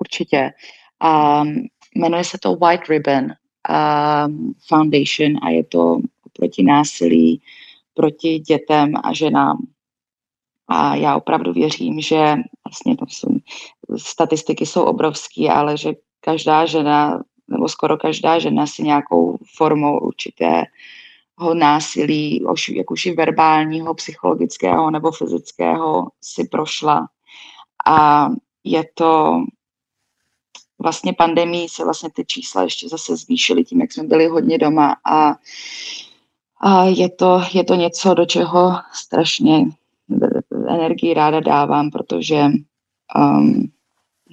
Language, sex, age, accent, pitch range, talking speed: Czech, female, 20-39, native, 150-175 Hz, 120 wpm